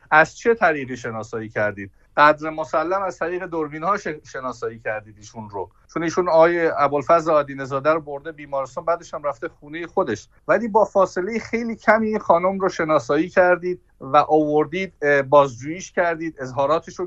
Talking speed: 155 wpm